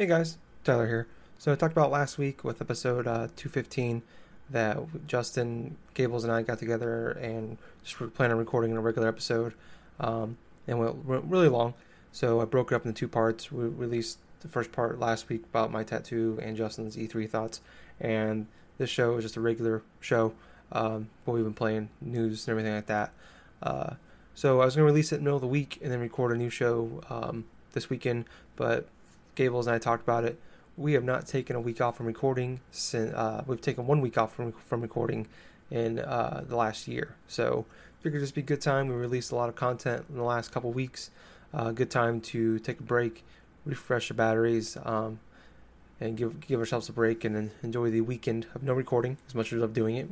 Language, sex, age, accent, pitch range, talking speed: English, male, 20-39, American, 115-135 Hz, 220 wpm